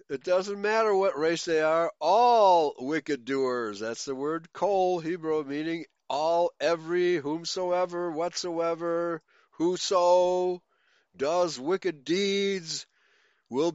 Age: 60-79